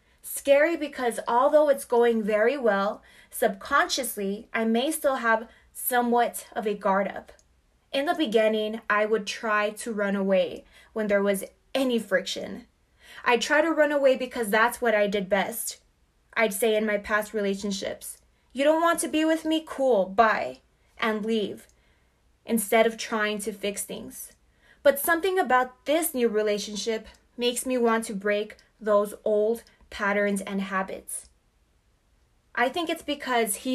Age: 20-39